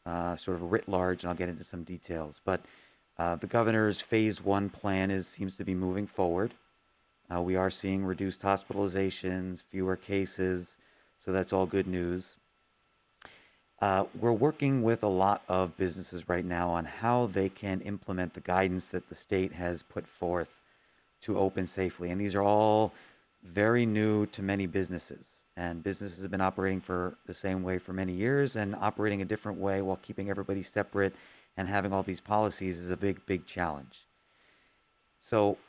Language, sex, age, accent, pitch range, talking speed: English, male, 30-49, American, 90-105 Hz, 175 wpm